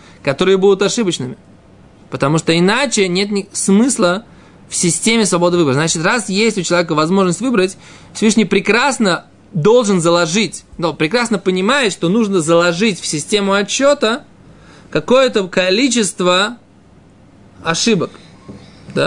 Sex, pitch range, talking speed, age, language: male, 165-215 Hz, 110 wpm, 20-39, Russian